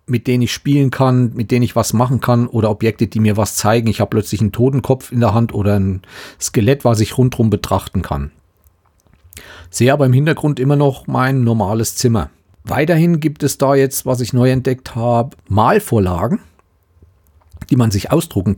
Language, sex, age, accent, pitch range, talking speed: German, male, 40-59, German, 105-140 Hz, 185 wpm